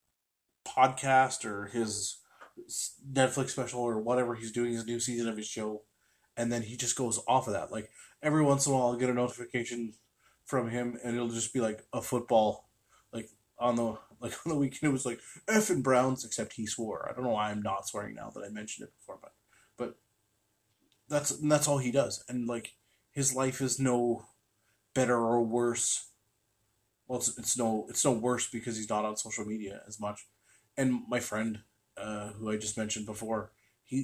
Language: English